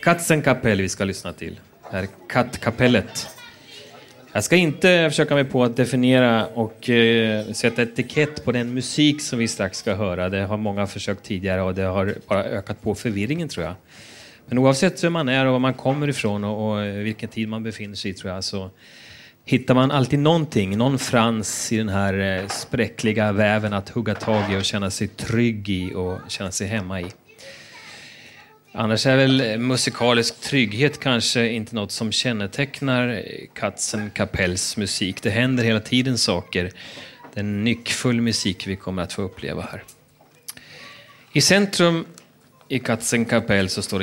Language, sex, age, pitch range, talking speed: Swedish, male, 30-49, 100-130 Hz, 170 wpm